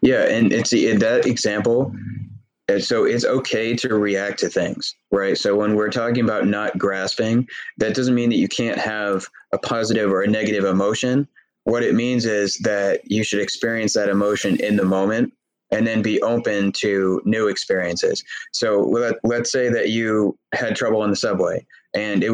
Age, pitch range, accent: 20-39, 100-115 Hz, American